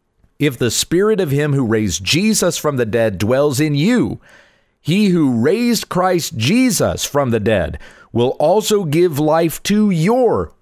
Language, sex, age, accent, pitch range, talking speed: English, male, 40-59, American, 115-175 Hz, 160 wpm